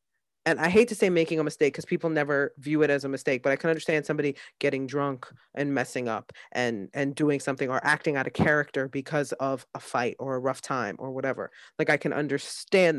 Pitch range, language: 140-160 Hz, English